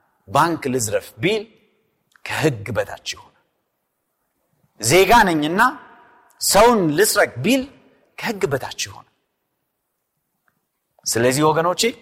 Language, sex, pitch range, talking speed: Amharic, male, 170-260 Hz, 75 wpm